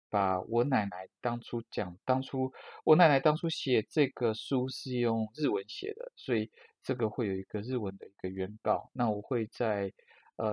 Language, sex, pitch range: Chinese, male, 100-125 Hz